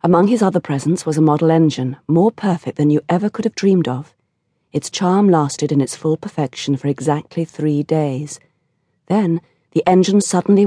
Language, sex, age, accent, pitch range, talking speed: English, female, 40-59, British, 140-175 Hz, 180 wpm